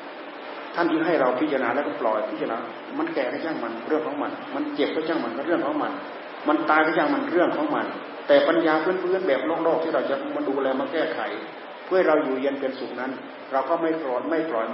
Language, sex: Thai, male